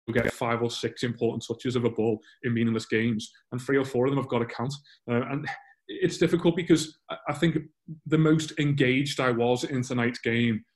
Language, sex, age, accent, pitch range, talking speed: English, male, 20-39, British, 115-135 Hz, 205 wpm